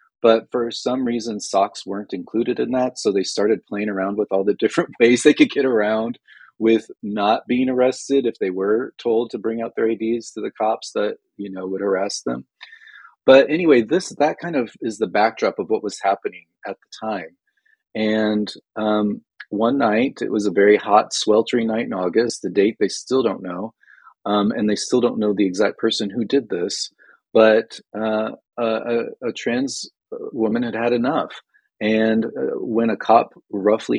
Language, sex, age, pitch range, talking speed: English, male, 30-49, 105-115 Hz, 190 wpm